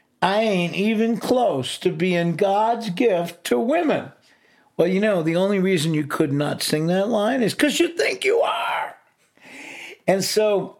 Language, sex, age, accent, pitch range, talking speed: English, male, 50-69, American, 135-205 Hz, 165 wpm